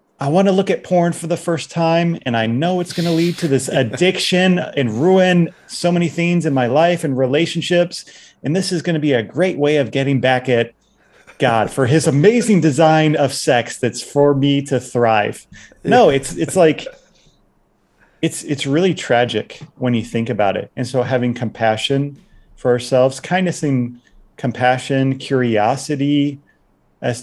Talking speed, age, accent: 170 wpm, 30-49, American